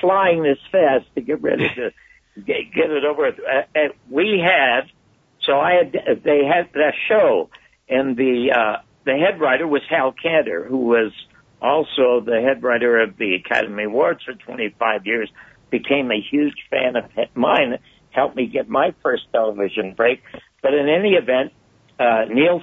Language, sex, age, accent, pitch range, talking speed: English, male, 60-79, American, 130-175 Hz, 160 wpm